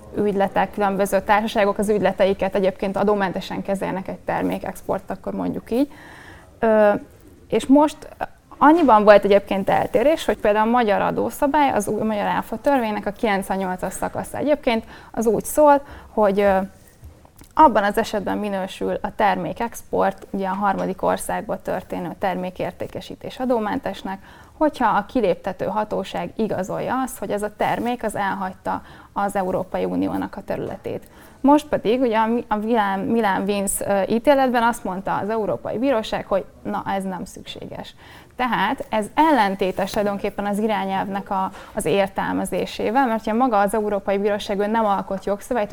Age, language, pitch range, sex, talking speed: 20-39, Hungarian, 195-235 Hz, female, 135 wpm